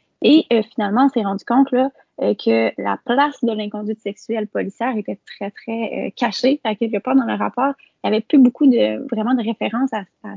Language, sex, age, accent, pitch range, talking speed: French, female, 20-39, Canadian, 220-270 Hz, 215 wpm